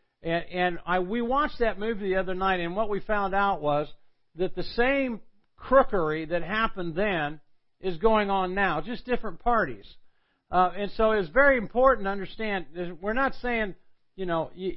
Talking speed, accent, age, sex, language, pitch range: 175 wpm, American, 50-69, male, English, 170-215 Hz